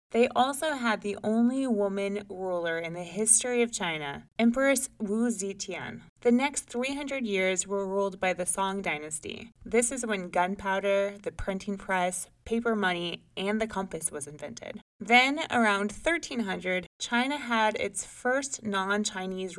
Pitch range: 180-235 Hz